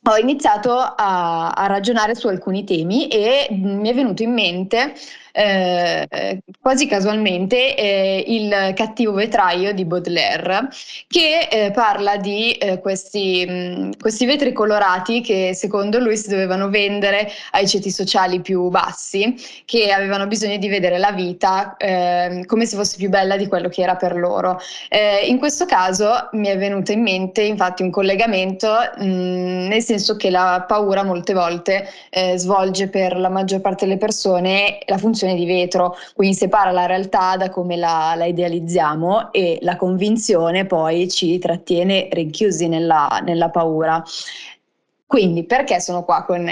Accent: native